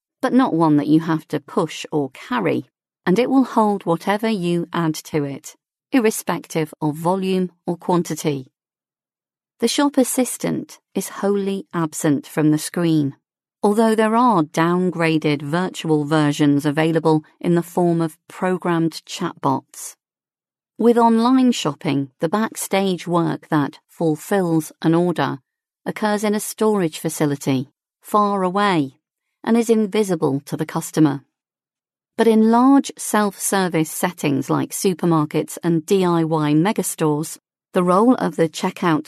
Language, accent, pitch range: English, British, 155-210 Hz